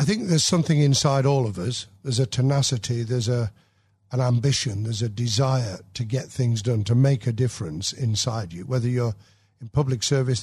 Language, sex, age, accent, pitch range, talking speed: English, male, 50-69, British, 110-140 Hz, 190 wpm